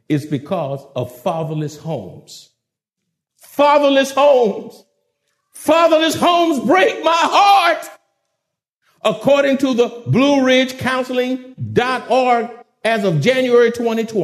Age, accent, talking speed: 50-69, American, 90 wpm